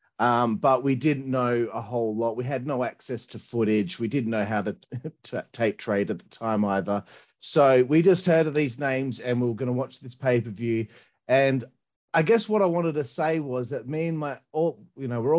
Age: 30-49